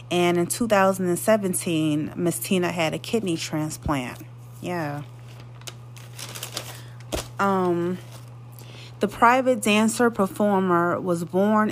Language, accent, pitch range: English, American, 140-195 Hz